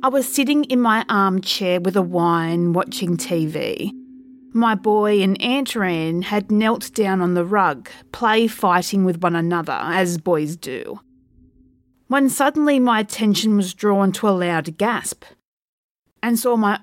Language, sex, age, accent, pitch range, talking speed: English, female, 30-49, Australian, 180-260 Hz, 150 wpm